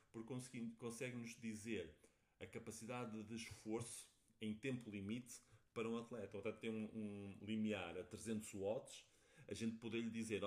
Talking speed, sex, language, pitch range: 150 wpm, male, Portuguese, 105-125 Hz